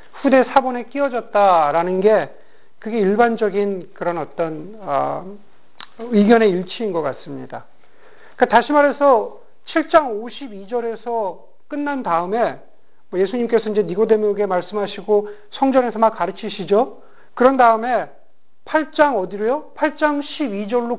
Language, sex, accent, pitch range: Korean, male, native, 205-265 Hz